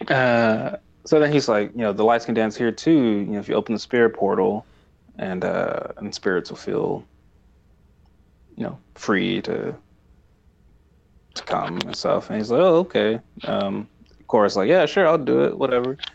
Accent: American